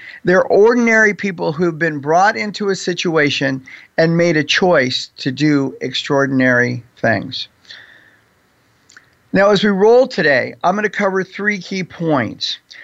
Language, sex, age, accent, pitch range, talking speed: English, male, 50-69, American, 145-205 Hz, 135 wpm